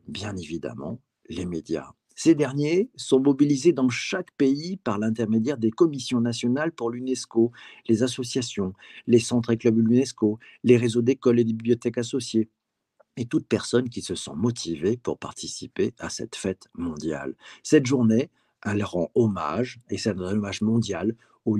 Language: French